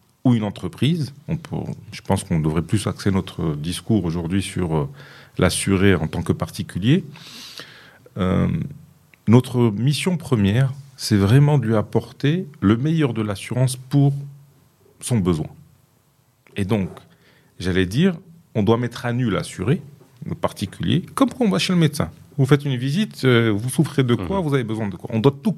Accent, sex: French, male